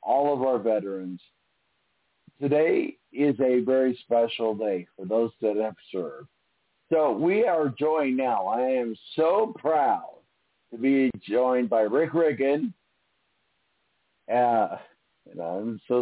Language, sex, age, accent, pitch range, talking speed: English, male, 50-69, American, 110-140 Hz, 125 wpm